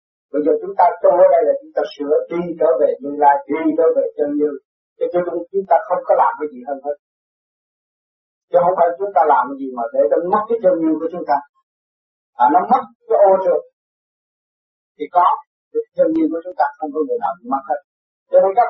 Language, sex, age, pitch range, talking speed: Vietnamese, male, 60-79, 155-250 Hz, 230 wpm